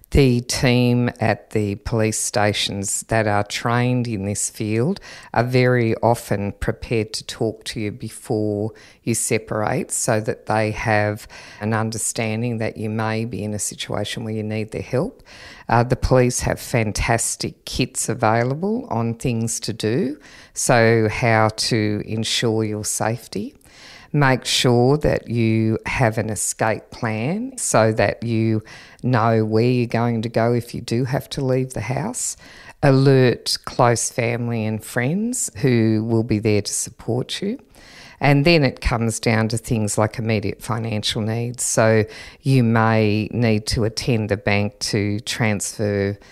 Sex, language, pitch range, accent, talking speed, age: female, English, 105-120 Hz, Australian, 150 wpm, 50-69